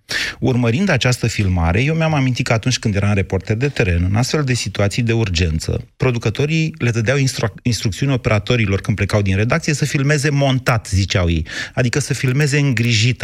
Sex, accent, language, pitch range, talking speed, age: male, native, Romanian, 105-135 Hz, 175 wpm, 30-49